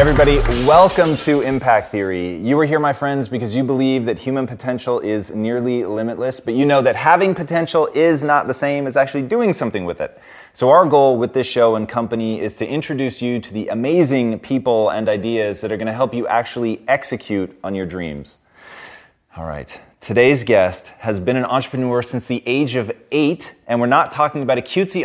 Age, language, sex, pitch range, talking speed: 30-49, English, male, 110-140 Hz, 200 wpm